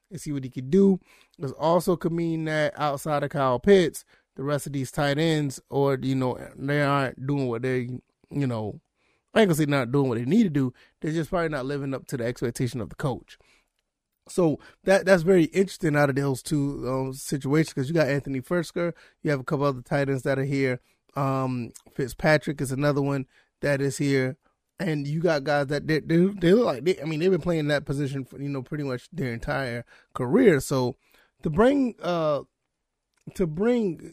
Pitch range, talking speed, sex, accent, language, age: 140-175 Hz, 210 wpm, male, American, English, 20-39